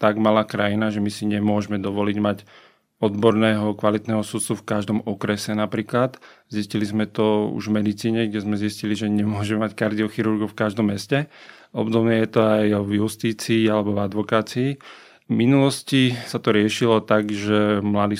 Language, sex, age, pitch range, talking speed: Slovak, male, 30-49, 105-115 Hz, 160 wpm